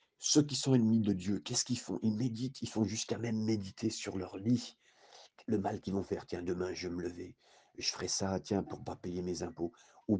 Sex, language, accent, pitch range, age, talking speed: male, French, French, 95-125 Hz, 50-69, 240 wpm